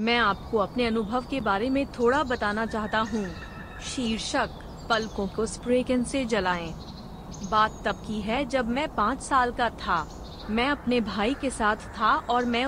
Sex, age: female, 30-49